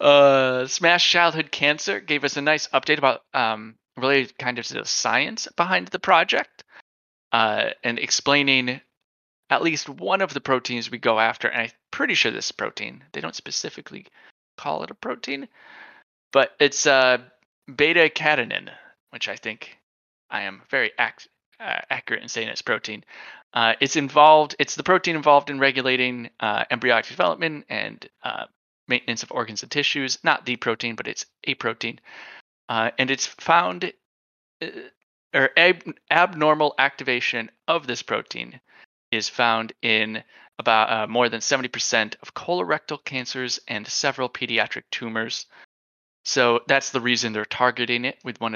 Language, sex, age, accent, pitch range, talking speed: English, male, 20-39, American, 115-145 Hz, 155 wpm